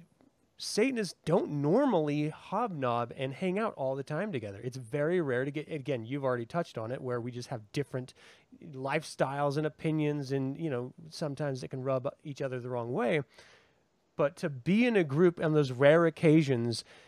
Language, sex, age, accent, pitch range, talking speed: English, male, 30-49, American, 130-160 Hz, 185 wpm